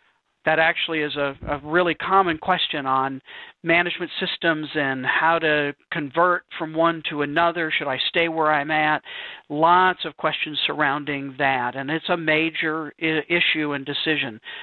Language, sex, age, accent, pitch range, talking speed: English, male, 50-69, American, 150-180 Hz, 150 wpm